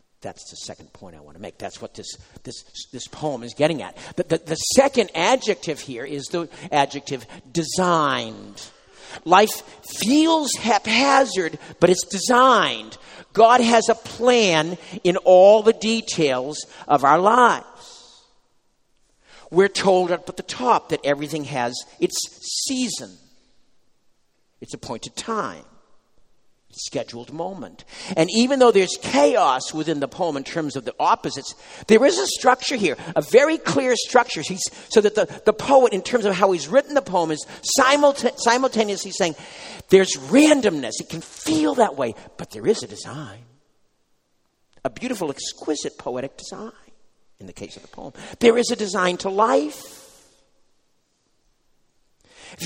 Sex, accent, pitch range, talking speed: male, American, 155-240 Hz, 150 wpm